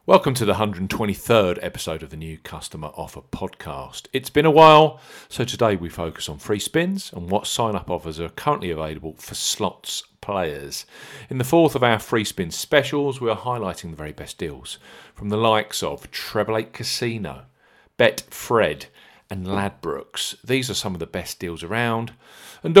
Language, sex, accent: English, male, British